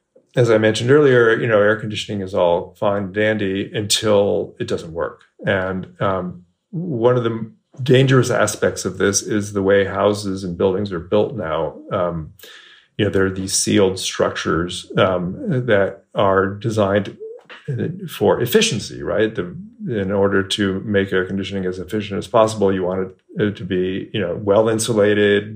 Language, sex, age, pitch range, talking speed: English, male, 40-59, 95-110 Hz, 165 wpm